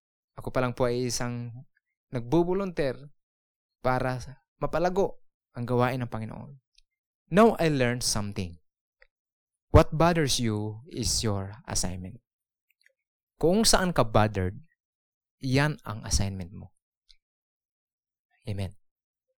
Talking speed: 95 wpm